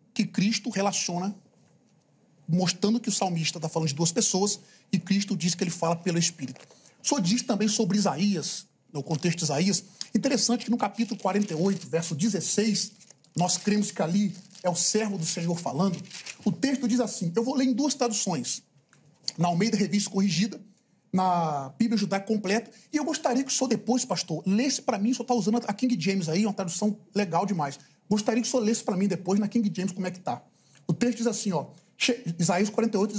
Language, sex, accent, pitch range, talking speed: Portuguese, male, Brazilian, 185-235 Hz, 195 wpm